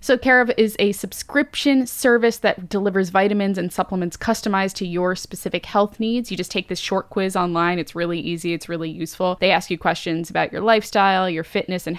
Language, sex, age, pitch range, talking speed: English, female, 10-29, 180-225 Hz, 200 wpm